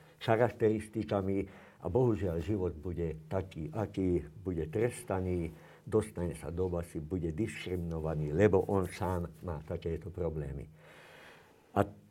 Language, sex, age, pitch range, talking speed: Slovak, male, 60-79, 85-110 Hz, 110 wpm